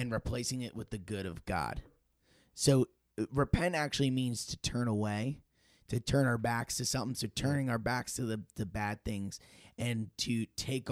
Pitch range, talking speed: 105-130 Hz, 175 wpm